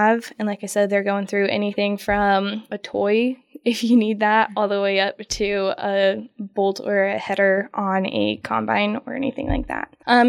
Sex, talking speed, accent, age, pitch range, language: female, 190 wpm, American, 10-29, 205-225 Hz, English